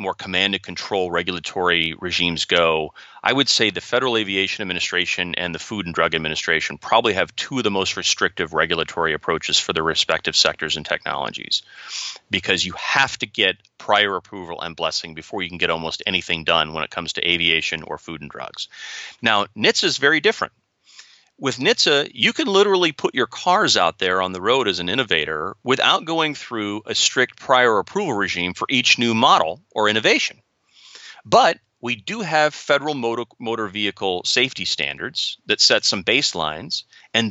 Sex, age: male, 30-49